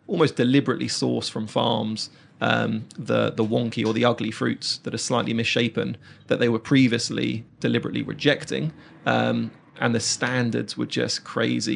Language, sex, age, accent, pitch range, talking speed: English, male, 30-49, British, 110-125 Hz, 155 wpm